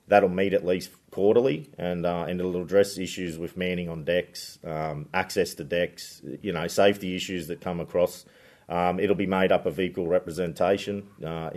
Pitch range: 85-95 Hz